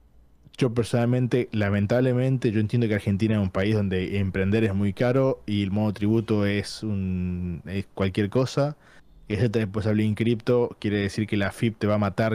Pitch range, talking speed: 95-120 Hz, 185 wpm